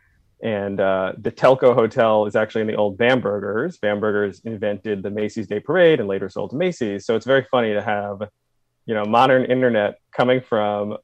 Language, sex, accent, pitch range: English, male, American, 100-115 Hz